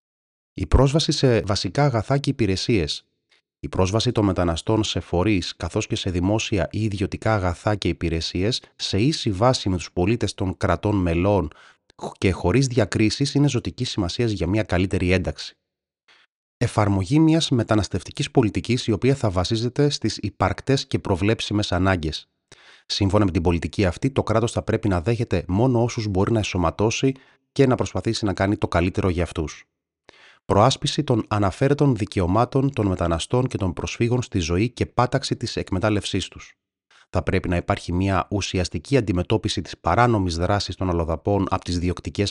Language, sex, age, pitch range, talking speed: Greek, male, 30-49, 90-115 Hz, 155 wpm